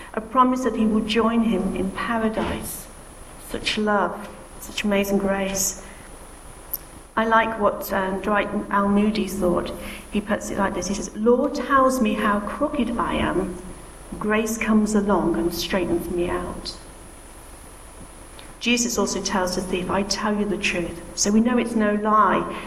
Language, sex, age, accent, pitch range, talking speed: English, female, 40-59, British, 195-235 Hz, 155 wpm